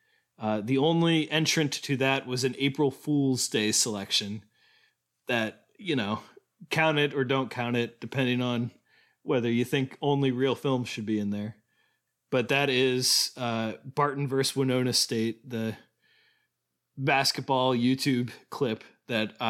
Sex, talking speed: male, 140 wpm